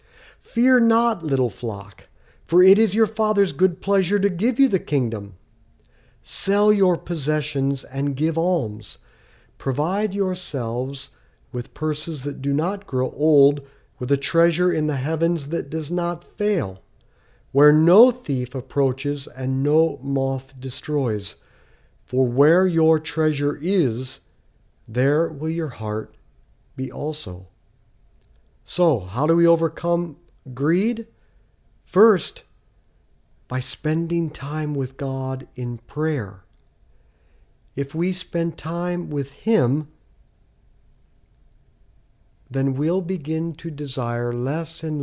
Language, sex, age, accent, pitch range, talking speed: English, male, 50-69, American, 125-170 Hz, 115 wpm